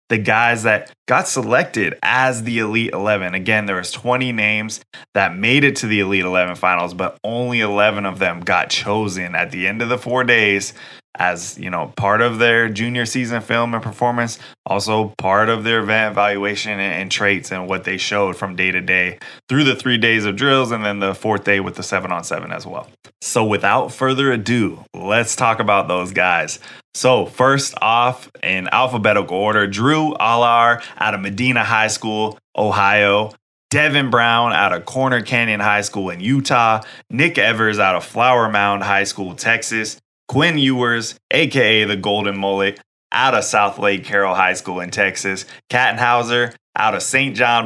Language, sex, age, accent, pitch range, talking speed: English, male, 20-39, American, 100-120 Hz, 180 wpm